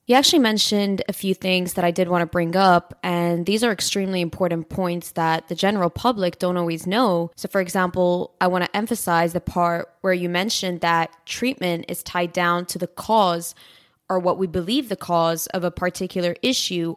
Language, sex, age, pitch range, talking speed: English, female, 20-39, 170-190 Hz, 200 wpm